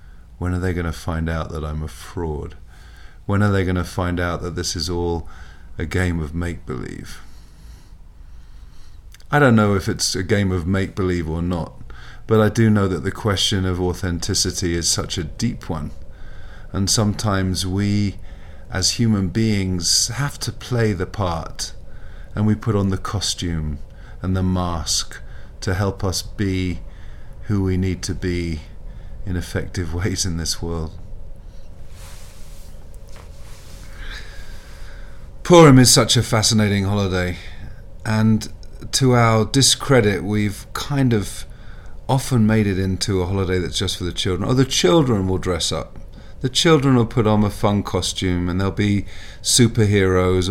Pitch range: 85-105 Hz